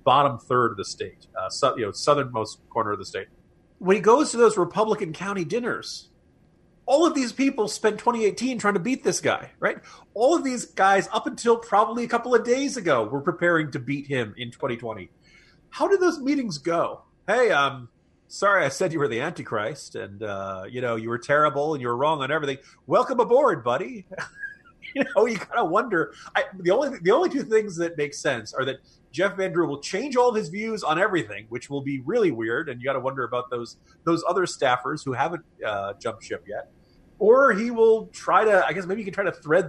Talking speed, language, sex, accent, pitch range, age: 220 wpm, English, male, American, 130-225 Hz, 40-59